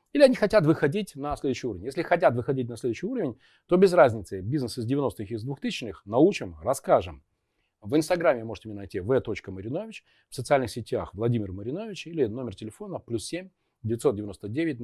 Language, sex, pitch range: Russian, male, 100-150 Hz